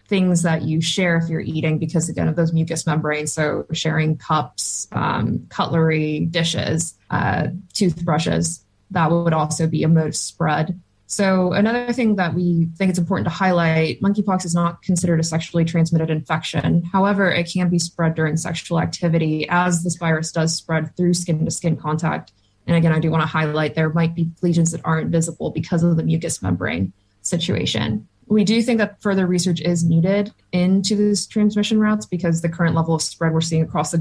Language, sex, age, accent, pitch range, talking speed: English, female, 20-39, American, 160-180 Hz, 185 wpm